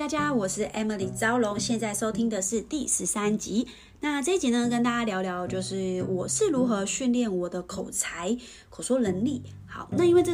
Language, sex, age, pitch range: Chinese, female, 20-39, 190-265 Hz